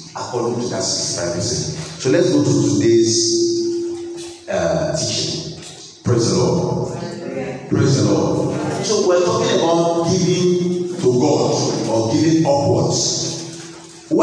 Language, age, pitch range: English, 50-69, 115-175 Hz